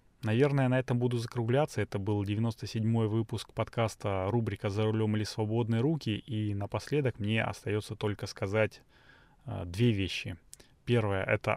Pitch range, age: 100-120 Hz, 20-39